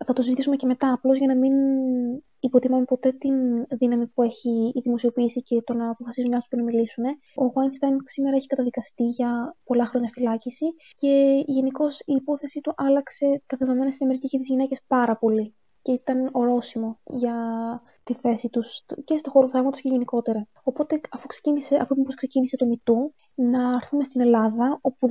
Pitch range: 240-270 Hz